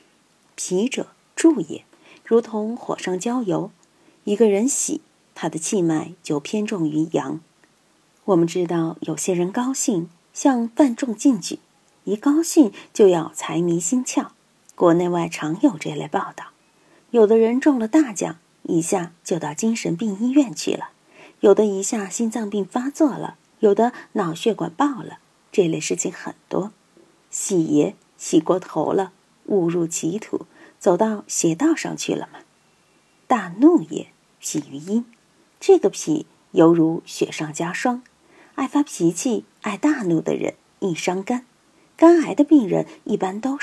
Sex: female